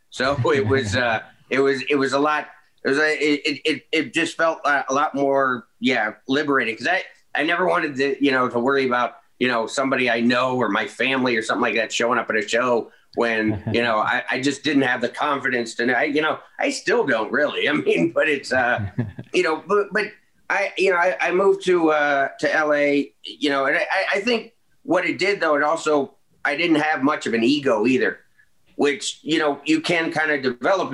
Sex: male